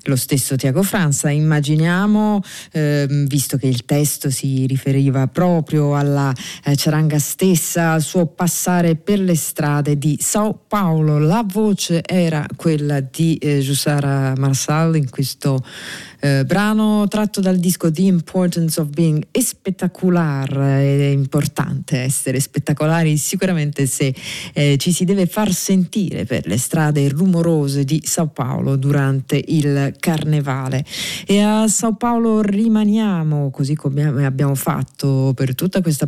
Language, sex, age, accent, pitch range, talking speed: Italian, female, 40-59, native, 140-180 Hz, 135 wpm